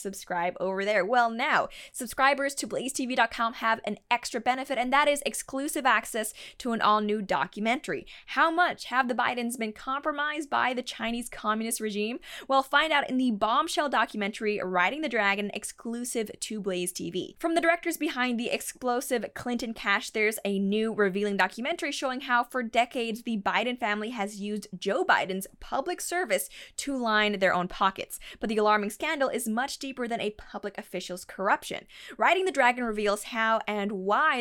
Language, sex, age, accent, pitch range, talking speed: English, female, 20-39, American, 205-260 Hz, 170 wpm